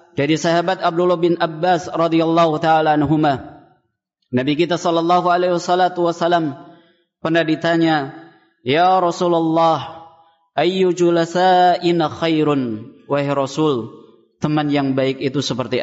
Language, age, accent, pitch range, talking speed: Indonesian, 20-39, native, 145-175 Hz, 95 wpm